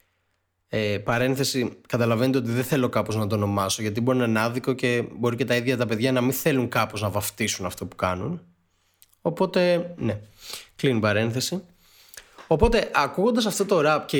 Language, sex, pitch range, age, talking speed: Greek, male, 110-175 Hz, 20-39, 175 wpm